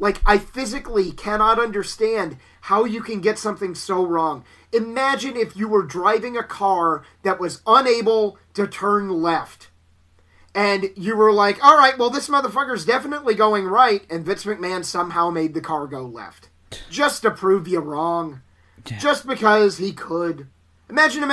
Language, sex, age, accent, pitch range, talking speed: English, male, 30-49, American, 170-220 Hz, 160 wpm